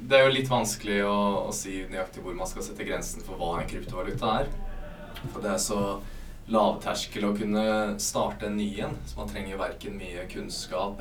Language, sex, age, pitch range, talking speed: English, male, 20-39, 95-115 Hz, 215 wpm